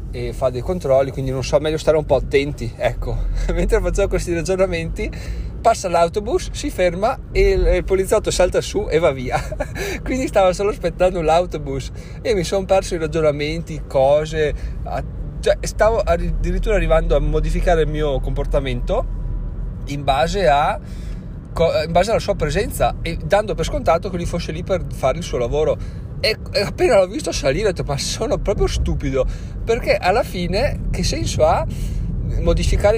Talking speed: 165 wpm